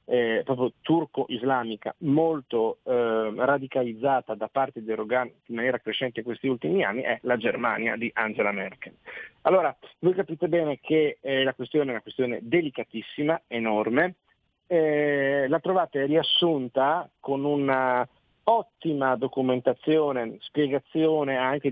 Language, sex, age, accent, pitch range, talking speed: Italian, male, 40-59, native, 120-145 Hz, 125 wpm